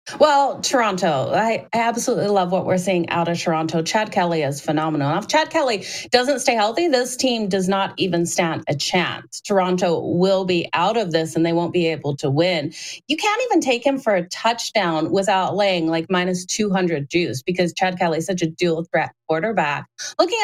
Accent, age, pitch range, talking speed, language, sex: American, 30-49, 175-230 Hz, 195 wpm, English, female